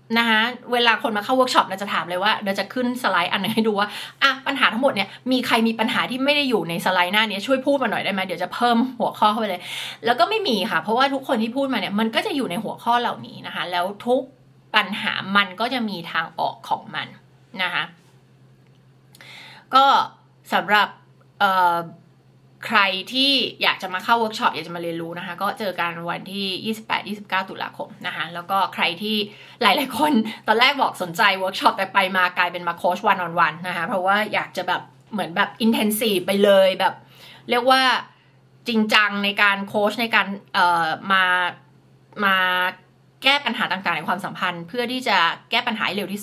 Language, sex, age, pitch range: Thai, female, 20-39, 180-235 Hz